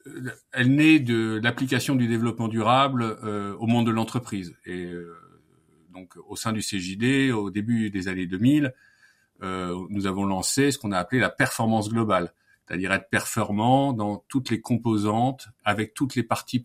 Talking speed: 155 wpm